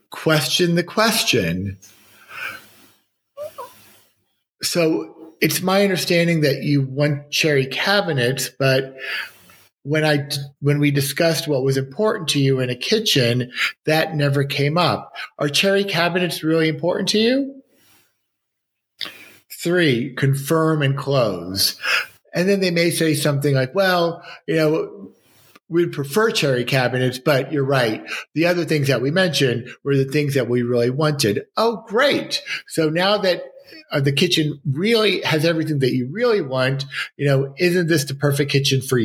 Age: 40-59